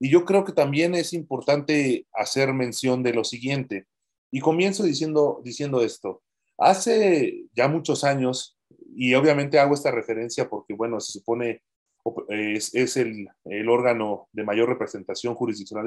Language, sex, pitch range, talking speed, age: Spanish, male, 115-145 Hz, 150 wpm, 30-49